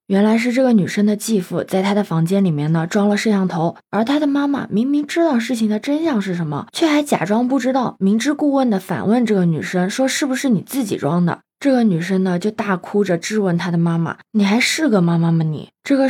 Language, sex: Chinese, female